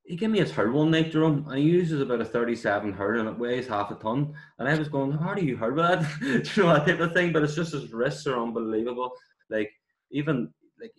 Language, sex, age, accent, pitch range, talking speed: English, male, 20-39, Irish, 100-135 Hz, 270 wpm